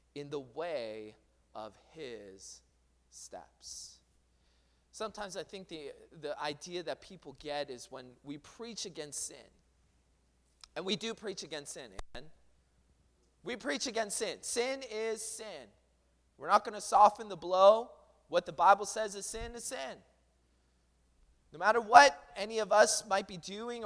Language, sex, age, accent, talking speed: English, male, 20-39, American, 145 wpm